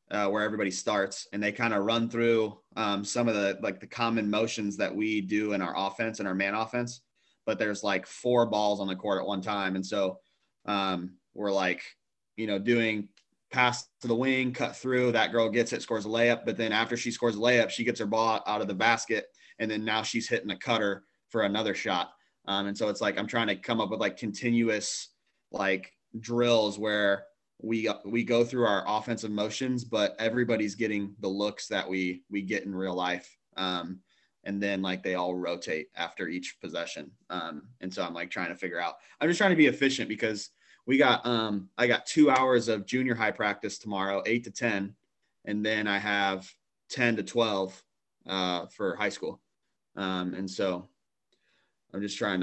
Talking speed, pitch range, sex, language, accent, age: 205 wpm, 95-115 Hz, male, English, American, 20-39